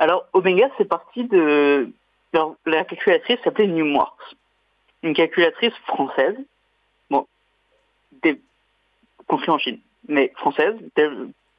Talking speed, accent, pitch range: 105 wpm, French, 150-255 Hz